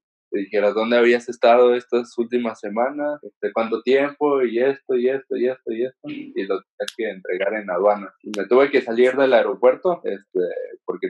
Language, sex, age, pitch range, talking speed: Spanish, male, 20-39, 100-140 Hz, 185 wpm